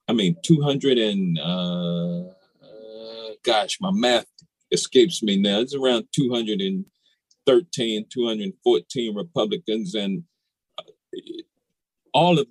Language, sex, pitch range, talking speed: English, male, 120-180 Hz, 95 wpm